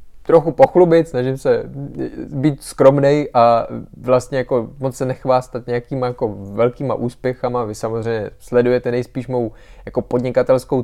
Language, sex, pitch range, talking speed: Czech, male, 120-140 Hz, 120 wpm